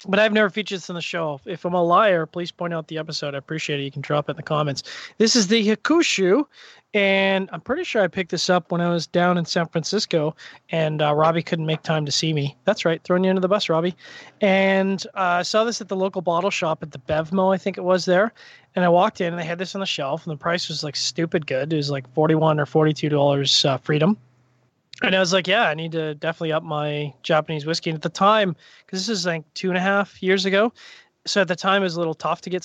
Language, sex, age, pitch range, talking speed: English, male, 20-39, 150-185 Hz, 265 wpm